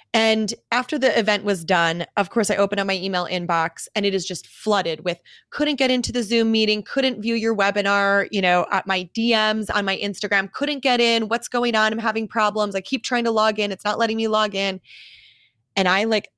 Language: English